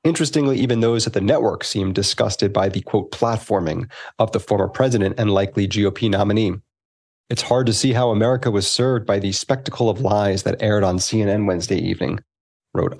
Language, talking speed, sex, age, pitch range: English, 185 wpm, male, 30-49, 100-130 Hz